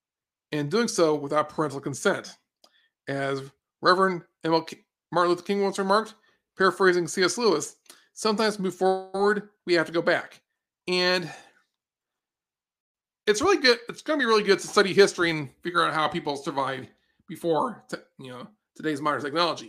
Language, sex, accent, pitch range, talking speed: English, male, American, 150-190 Hz, 160 wpm